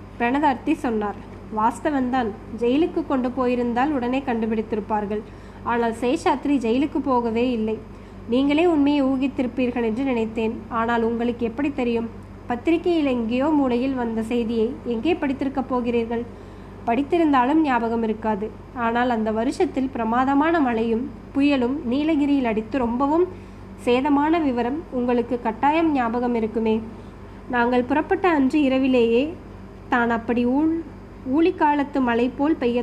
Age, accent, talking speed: 20-39, native, 105 wpm